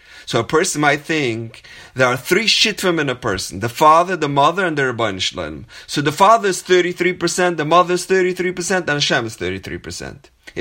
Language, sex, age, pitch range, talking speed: English, male, 30-49, 145-195 Hz, 185 wpm